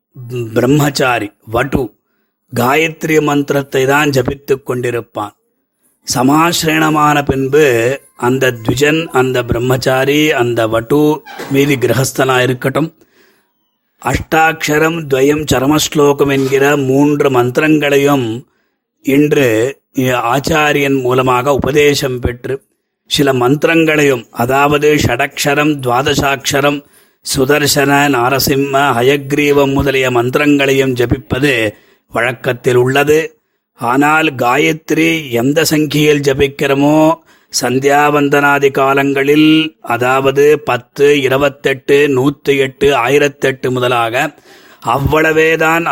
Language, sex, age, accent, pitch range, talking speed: Tamil, male, 30-49, native, 130-150 Hz, 75 wpm